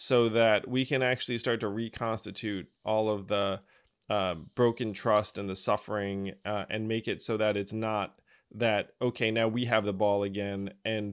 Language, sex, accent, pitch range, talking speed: English, male, American, 100-115 Hz, 185 wpm